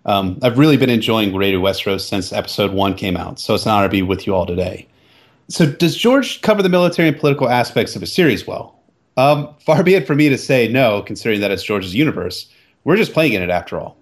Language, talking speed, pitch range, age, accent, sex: English, 240 wpm, 100-145 Hz, 30-49, American, male